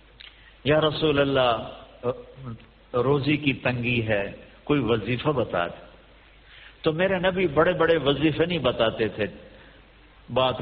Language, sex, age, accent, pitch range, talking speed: English, male, 50-69, Indian, 115-150 Hz, 105 wpm